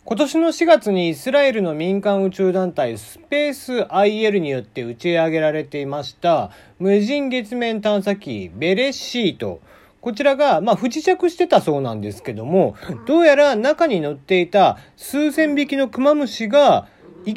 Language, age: Japanese, 40-59